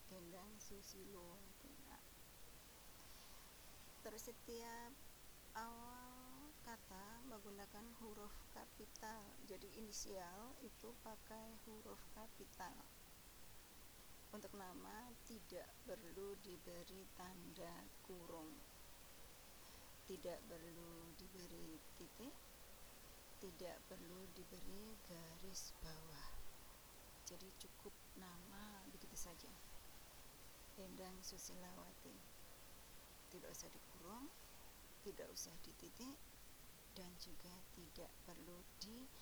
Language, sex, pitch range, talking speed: Indonesian, female, 180-225 Hz, 75 wpm